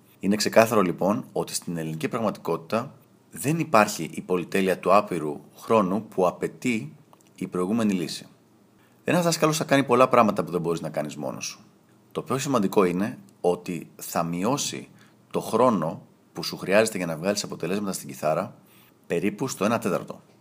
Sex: male